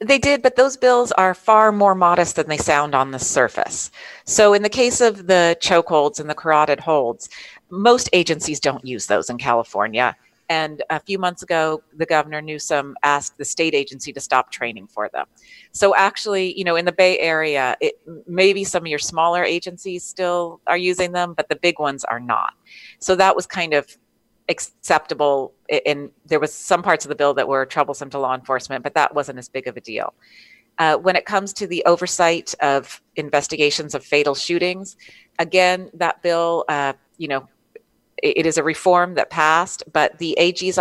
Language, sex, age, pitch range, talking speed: English, female, 30-49, 145-185 Hz, 195 wpm